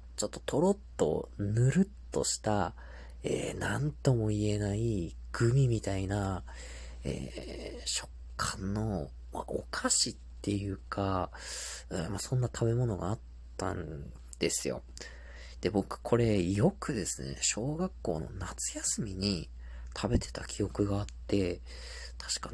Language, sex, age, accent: Japanese, male, 40-59, native